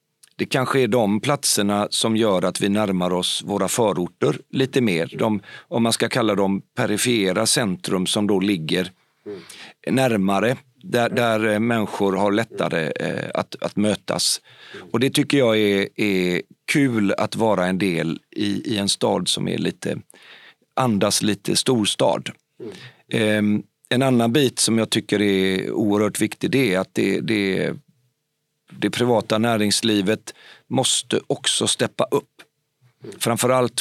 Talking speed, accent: 140 wpm, native